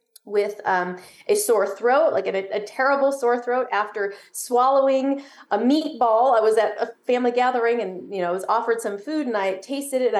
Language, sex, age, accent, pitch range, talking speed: English, female, 30-49, American, 200-275 Hz, 190 wpm